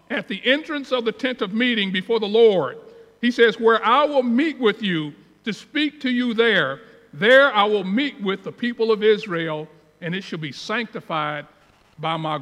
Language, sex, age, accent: English, male, 50-69, American